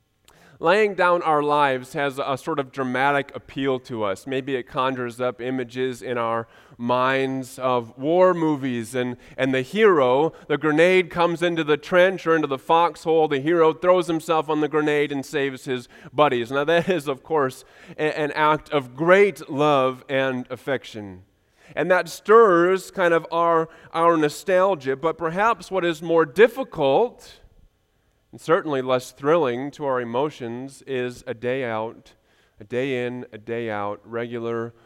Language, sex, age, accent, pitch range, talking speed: English, male, 30-49, American, 110-150 Hz, 160 wpm